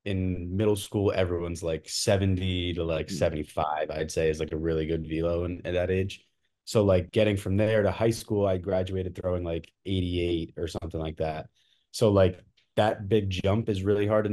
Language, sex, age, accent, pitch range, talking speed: English, male, 20-39, American, 85-95 Hz, 195 wpm